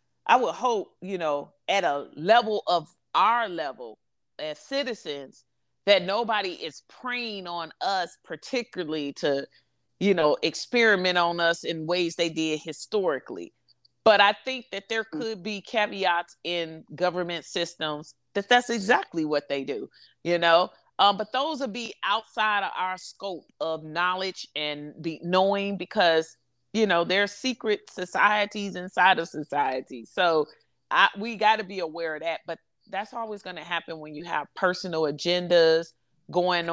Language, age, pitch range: English, 30-49, 155-200 Hz